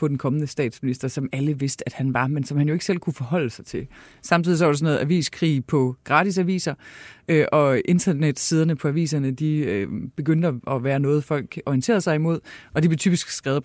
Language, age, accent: Danish, 30-49, native